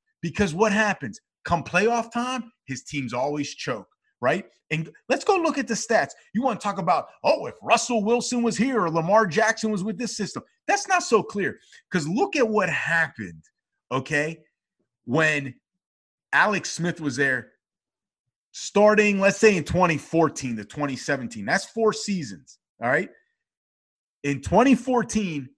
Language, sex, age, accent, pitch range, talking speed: English, male, 30-49, American, 175-240 Hz, 150 wpm